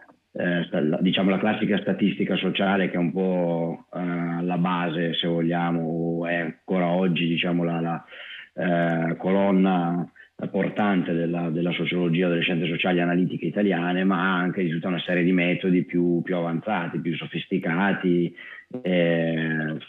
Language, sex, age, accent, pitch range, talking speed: Italian, male, 30-49, native, 85-95 Hz, 150 wpm